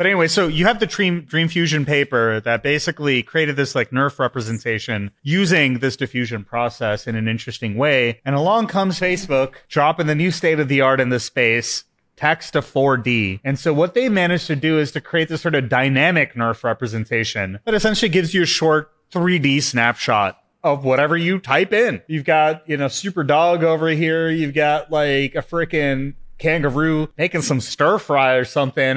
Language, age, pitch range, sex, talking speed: English, 30-49, 125-165 Hz, male, 190 wpm